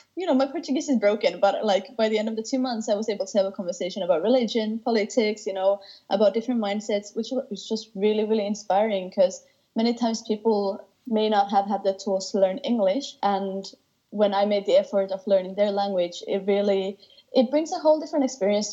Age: 20-39